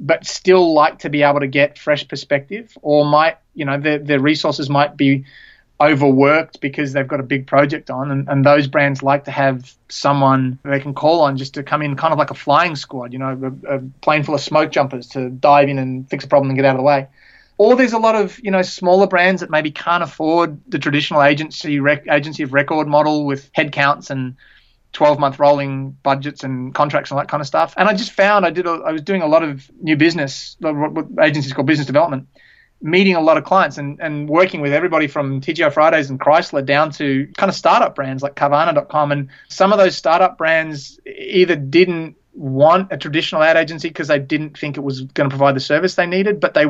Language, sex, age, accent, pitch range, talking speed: English, male, 30-49, Australian, 140-165 Hz, 230 wpm